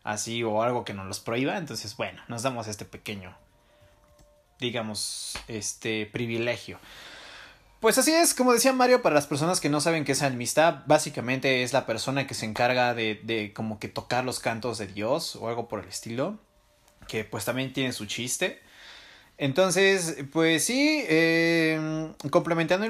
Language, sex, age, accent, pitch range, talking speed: Spanish, male, 20-39, Mexican, 115-140 Hz, 165 wpm